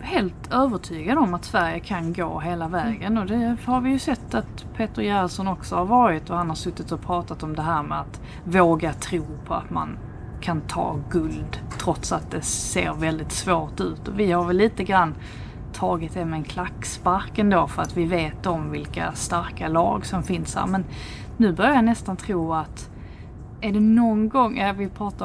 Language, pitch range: Swedish, 160-215 Hz